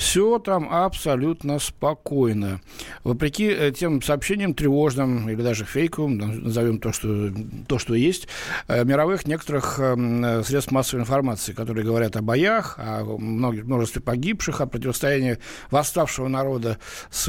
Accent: native